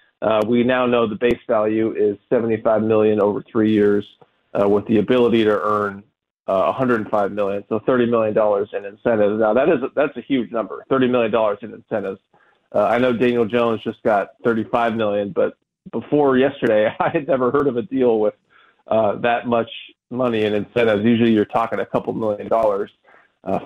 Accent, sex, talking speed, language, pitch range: American, male, 190 wpm, English, 110-125 Hz